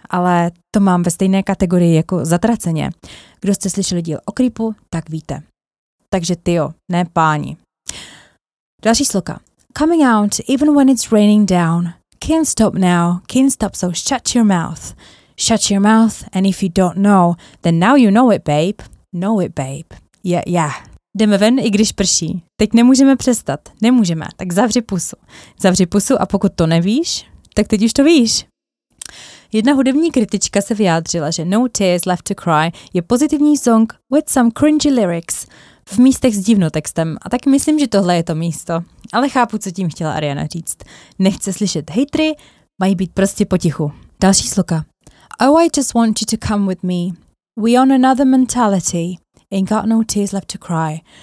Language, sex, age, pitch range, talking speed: Czech, female, 20-39, 175-235 Hz, 170 wpm